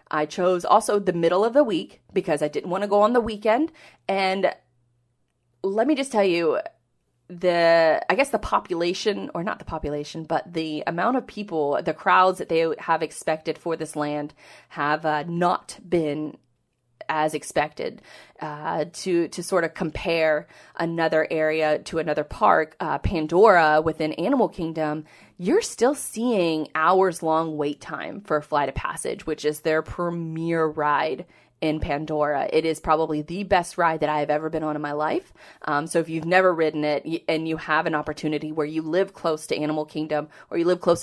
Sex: female